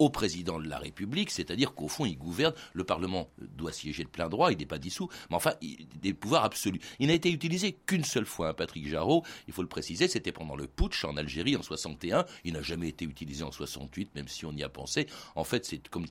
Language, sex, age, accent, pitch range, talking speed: French, male, 60-79, French, 85-140 Hz, 240 wpm